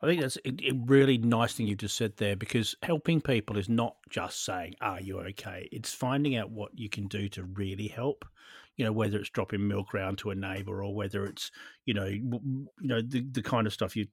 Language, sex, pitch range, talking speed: English, male, 100-125 Hz, 235 wpm